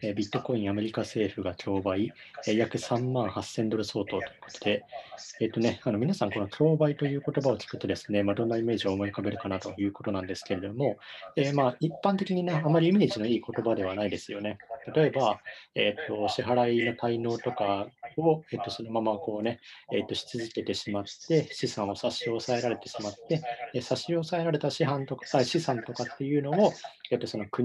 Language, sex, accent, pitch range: Japanese, male, native, 105-140 Hz